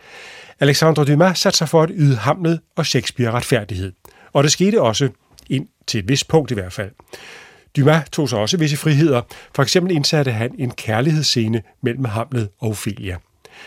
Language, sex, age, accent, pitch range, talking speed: Danish, male, 40-59, native, 115-160 Hz, 165 wpm